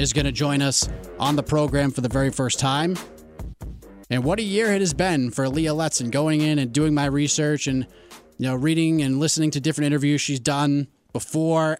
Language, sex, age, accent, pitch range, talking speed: English, male, 30-49, American, 135-175 Hz, 210 wpm